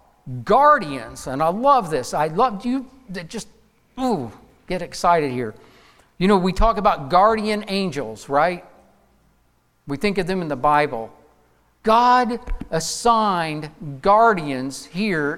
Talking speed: 130 wpm